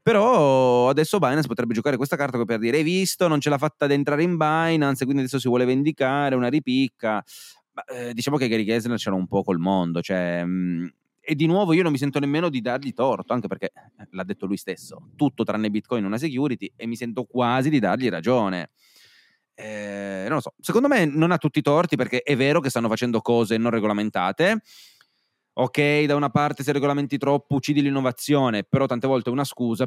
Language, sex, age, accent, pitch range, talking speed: Italian, male, 30-49, native, 100-140 Hz, 210 wpm